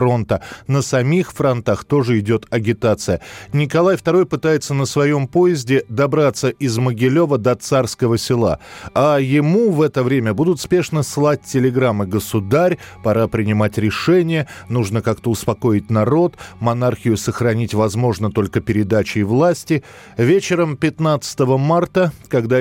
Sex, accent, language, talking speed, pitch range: male, native, Russian, 120 wpm, 110-150 Hz